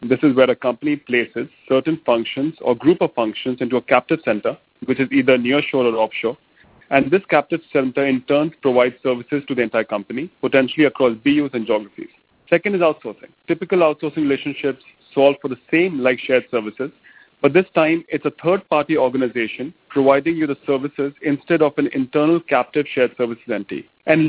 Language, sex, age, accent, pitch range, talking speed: English, male, 40-59, Indian, 130-170 Hz, 180 wpm